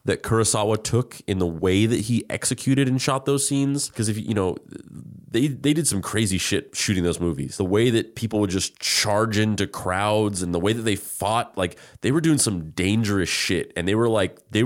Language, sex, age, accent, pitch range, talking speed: English, male, 20-39, American, 90-110 Hz, 215 wpm